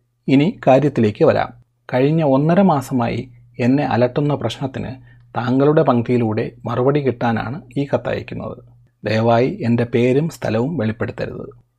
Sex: male